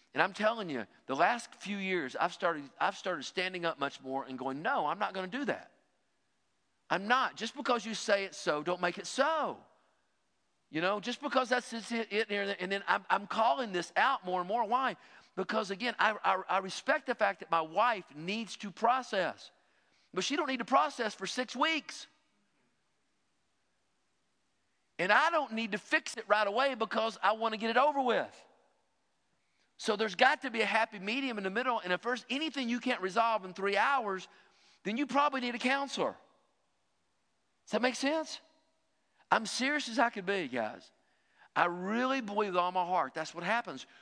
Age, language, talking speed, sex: 50-69, English, 195 wpm, male